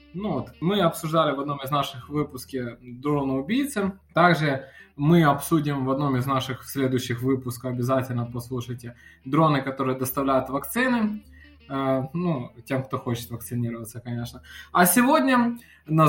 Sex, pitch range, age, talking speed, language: male, 135-185 Hz, 20-39, 125 wpm, Russian